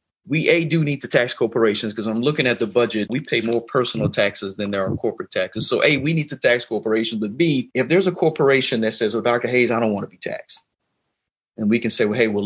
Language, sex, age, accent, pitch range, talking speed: English, male, 40-59, American, 105-130 Hz, 260 wpm